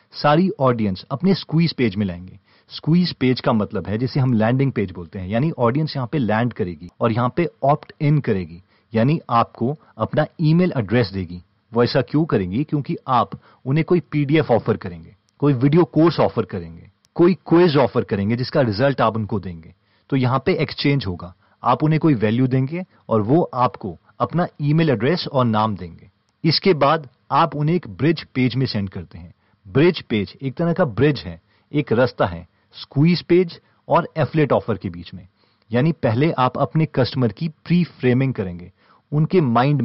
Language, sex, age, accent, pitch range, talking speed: Hindi, male, 40-59, native, 105-155 Hz, 180 wpm